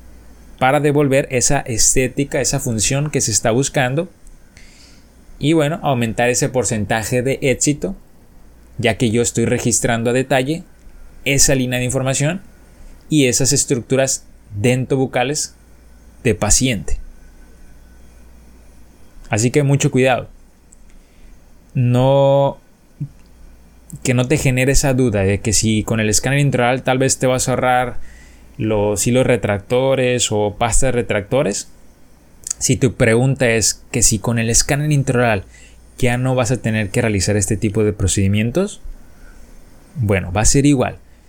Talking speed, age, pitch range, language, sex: 130 wpm, 20-39, 100-130 Hz, Spanish, male